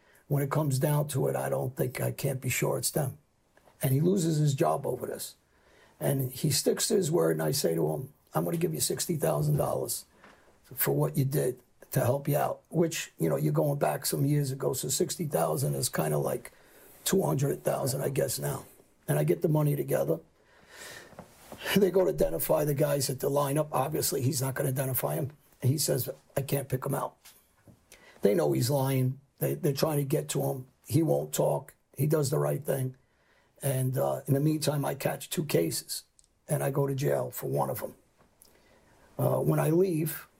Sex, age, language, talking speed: male, 50-69, English, 200 wpm